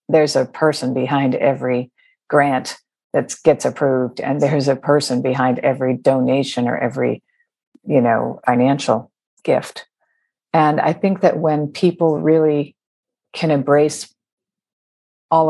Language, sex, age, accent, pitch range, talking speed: English, female, 50-69, American, 145-170 Hz, 125 wpm